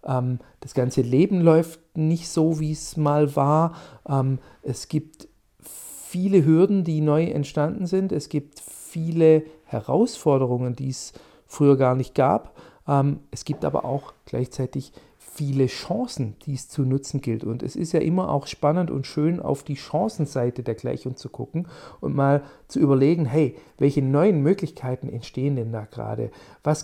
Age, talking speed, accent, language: 40-59, 155 wpm, German, German